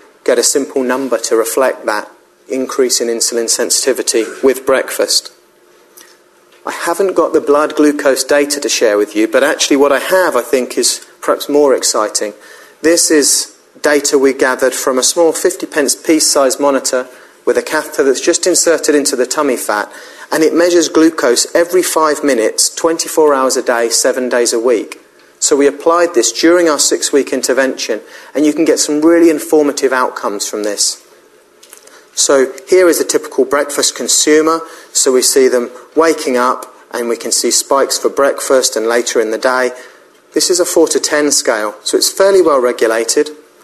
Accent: British